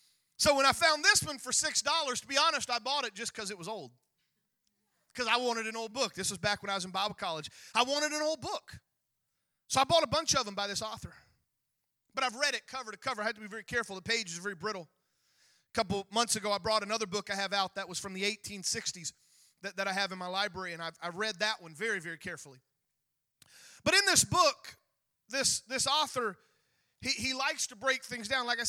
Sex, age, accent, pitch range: male, 30-49, American, 195-265 Hz